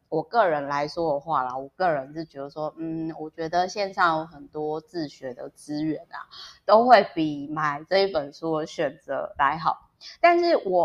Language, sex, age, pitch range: Chinese, female, 20-39, 145-180 Hz